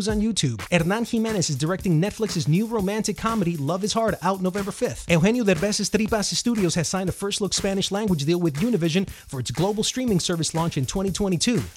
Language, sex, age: English, male, 30-49